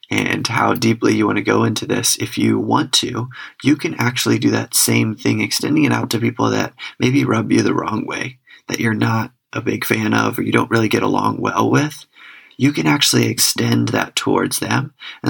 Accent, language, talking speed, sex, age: American, English, 215 wpm, male, 30-49